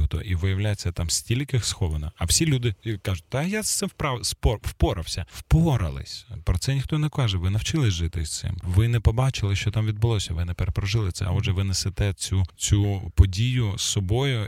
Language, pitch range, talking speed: Ukrainian, 90-110 Hz, 190 wpm